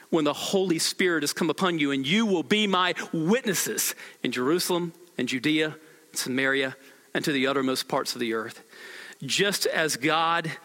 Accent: American